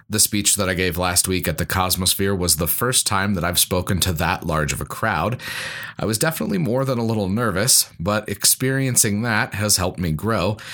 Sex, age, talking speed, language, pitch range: male, 30-49, 210 wpm, English, 95-125 Hz